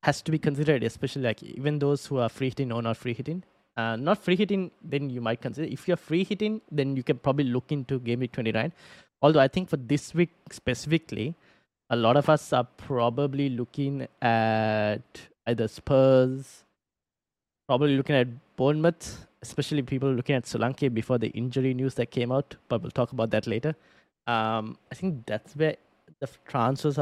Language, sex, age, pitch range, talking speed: English, male, 20-39, 115-145 Hz, 185 wpm